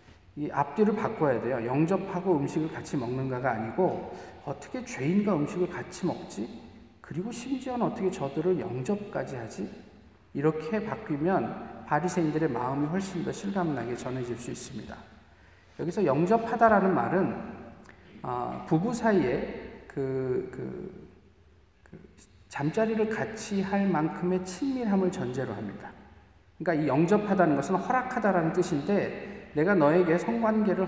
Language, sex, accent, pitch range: Korean, male, native, 155-215 Hz